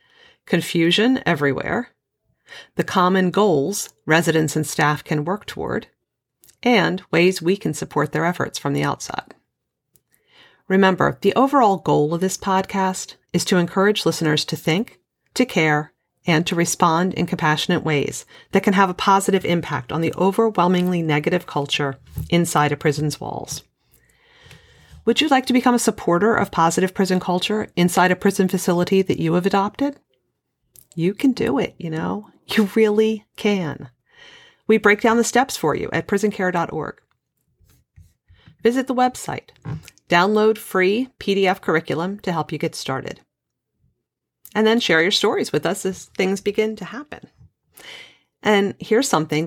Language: English